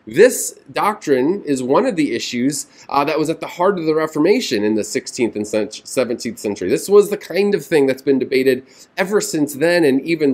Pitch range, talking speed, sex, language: 135-180 Hz, 210 wpm, male, English